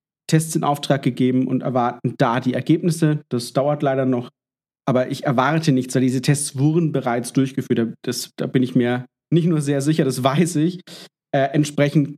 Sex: male